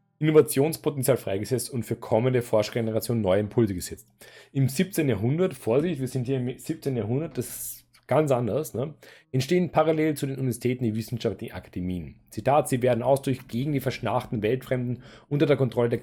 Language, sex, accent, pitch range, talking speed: German, male, German, 115-140 Hz, 170 wpm